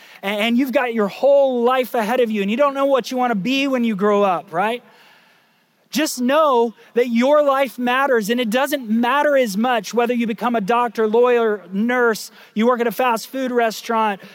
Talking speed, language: 200 wpm, English